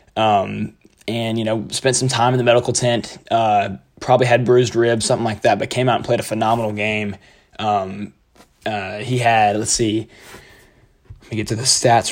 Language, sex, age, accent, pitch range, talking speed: English, male, 20-39, American, 110-125 Hz, 195 wpm